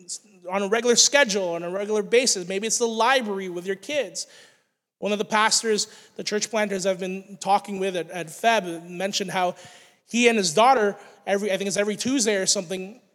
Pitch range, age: 185-220 Hz, 20-39